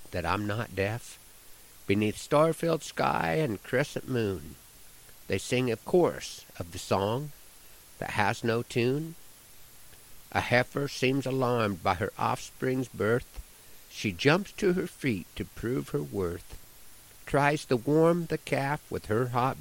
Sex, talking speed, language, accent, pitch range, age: male, 140 wpm, English, American, 100-135 Hz, 50-69